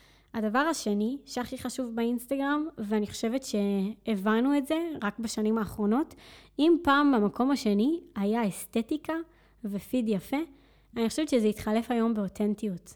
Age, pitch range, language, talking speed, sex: 20-39, 215-255 Hz, Hebrew, 125 wpm, female